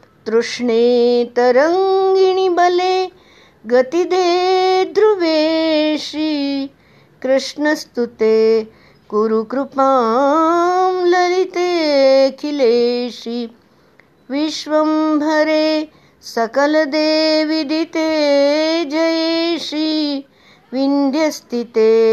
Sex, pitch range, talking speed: female, 240-325 Hz, 35 wpm